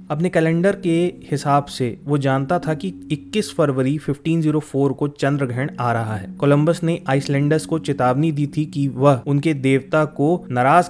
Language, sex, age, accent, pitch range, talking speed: Hindi, male, 20-39, native, 130-160 Hz, 170 wpm